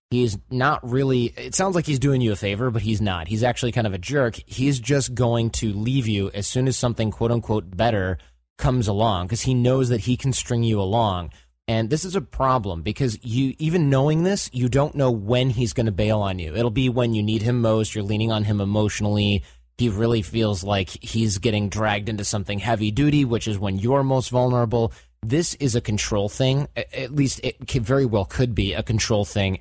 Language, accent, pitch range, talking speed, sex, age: English, American, 100-125 Hz, 215 wpm, male, 30-49